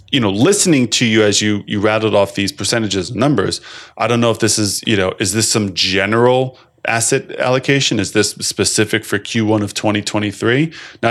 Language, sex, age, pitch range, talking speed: English, male, 20-39, 110-140 Hz, 195 wpm